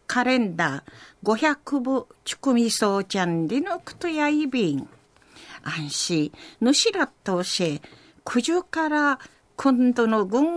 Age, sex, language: 50-69, female, Japanese